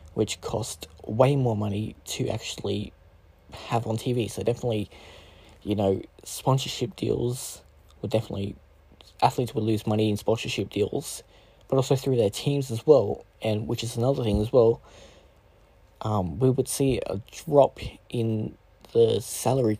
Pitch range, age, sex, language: 100-120 Hz, 20-39, male, English